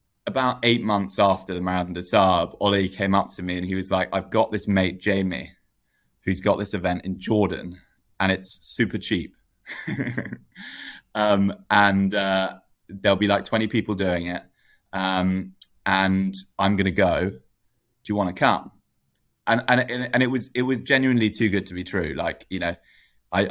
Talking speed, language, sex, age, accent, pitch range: 170 wpm, English, male, 20-39, British, 90-105 Hz